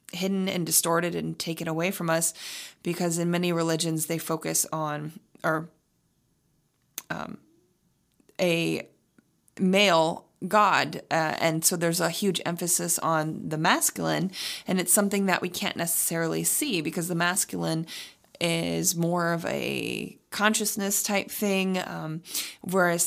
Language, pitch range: English, 165-190 Hz